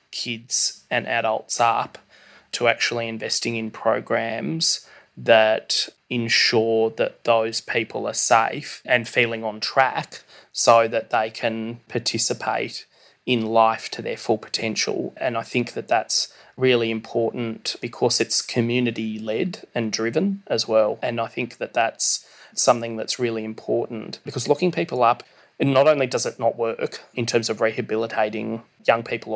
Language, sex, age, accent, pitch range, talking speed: English, male, 20-39, Australian, 110-120 Hz, 145 wpm